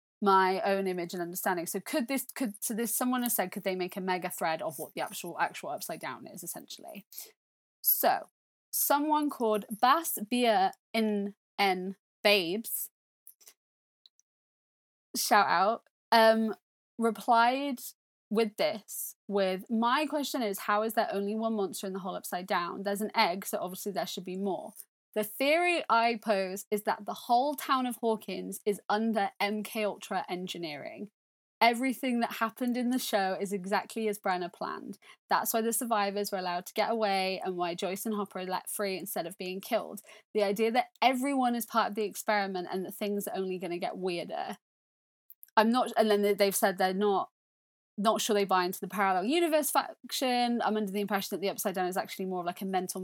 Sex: female